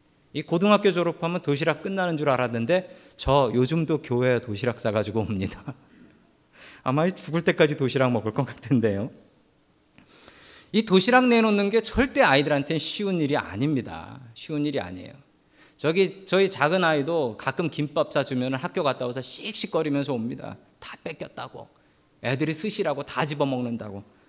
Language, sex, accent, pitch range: Korean, male, native, 125-190 Hz